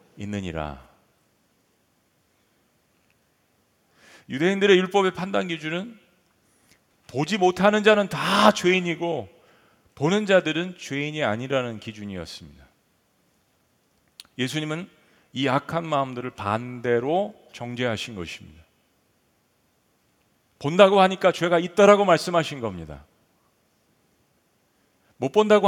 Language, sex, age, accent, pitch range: Korean, male, 40-59, native, 125-180 Hz